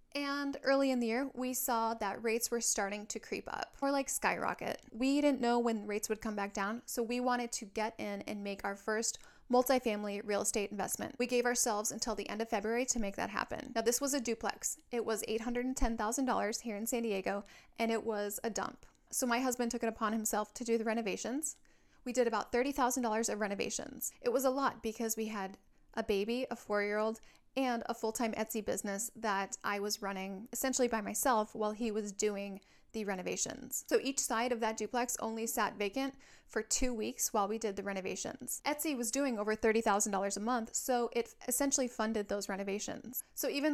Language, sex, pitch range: English, female, 210-250 Hz